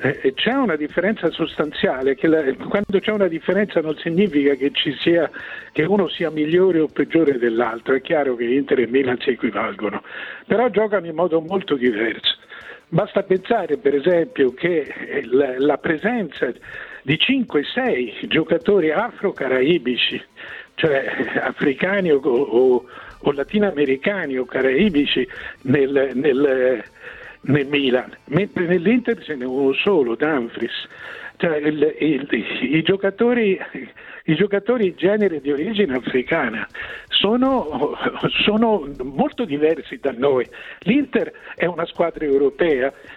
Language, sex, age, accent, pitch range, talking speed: Italian, male, 50-69, native, 145-230 Hz, 115 wpm